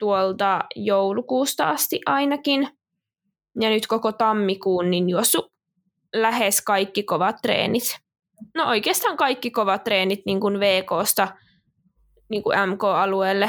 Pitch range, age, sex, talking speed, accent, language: 195-230 Hz, 20-39, female, 95 wpm, native, Finnish